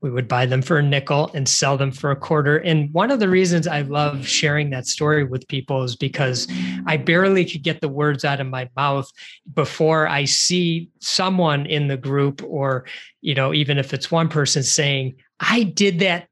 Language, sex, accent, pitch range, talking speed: English, male, American, 135-160 Hz, 205 wpm